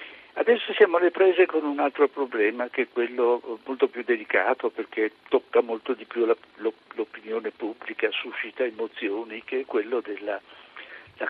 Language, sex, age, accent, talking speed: Italian, male, 60-79, native, 155 wpm